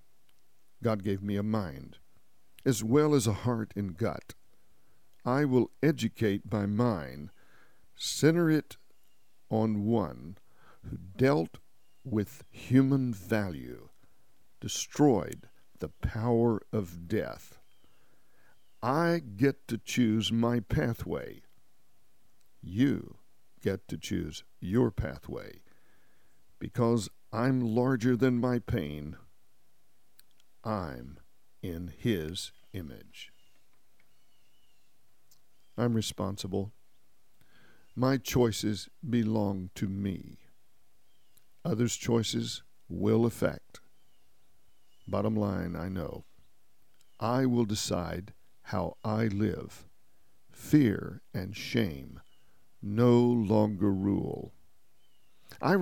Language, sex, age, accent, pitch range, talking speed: English, male, 60-79, American, 100-125 Hz, 85 wpm